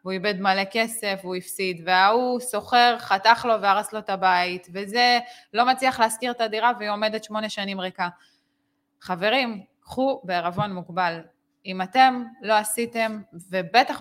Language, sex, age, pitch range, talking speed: Hebrew, female, 20-39, 185-240 Hz, 155 wpm